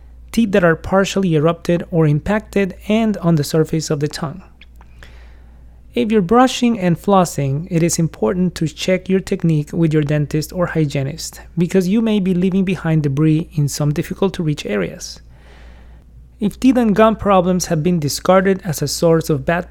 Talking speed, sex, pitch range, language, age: 165 wpm, male, 150-190 Hz, English, 30-49